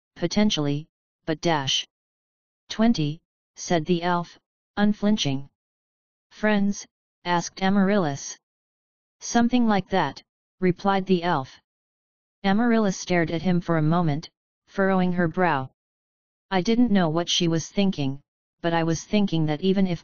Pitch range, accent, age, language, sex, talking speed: 165-190 Hz, American, 40-59, English, female, 125 wpm